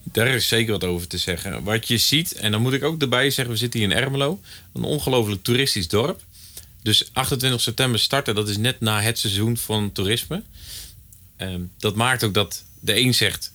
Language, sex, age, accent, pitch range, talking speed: Dutch, male, 40-59, Dutch, 95-110 Hz, 200 wpm